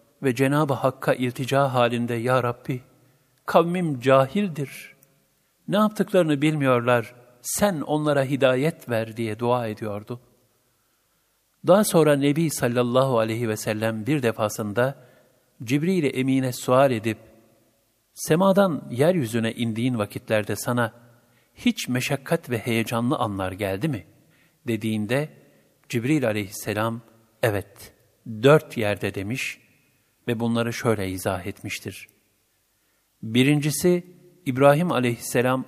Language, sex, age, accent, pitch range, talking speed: Turkish, male, 60-79, native, 110-140 Hz, 100 wpm